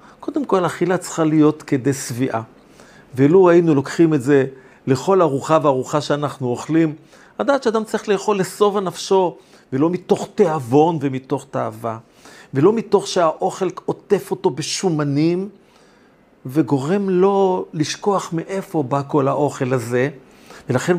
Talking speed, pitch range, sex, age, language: 125 wpm, 145-200 Hz, male, 50-69, Hebrew